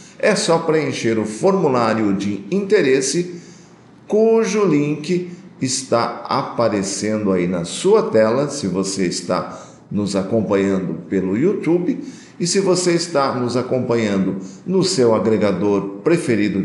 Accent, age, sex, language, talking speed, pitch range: Brazilian, 50-69, male, Portuguese, 115 wpm, 110-180 Hz